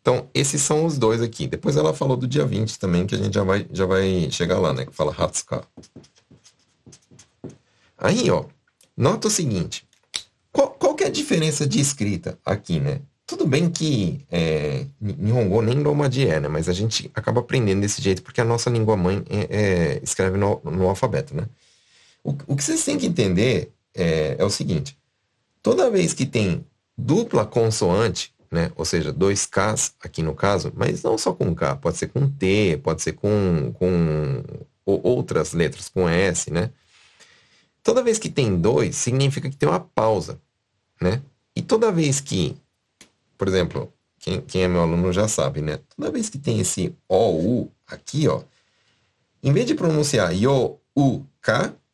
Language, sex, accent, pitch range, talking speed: Portuguese, male, Brazilian, 95-145 Hz, 180 wpm